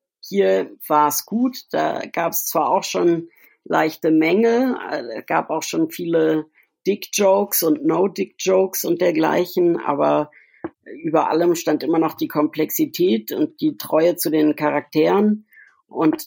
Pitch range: 130-160 Hz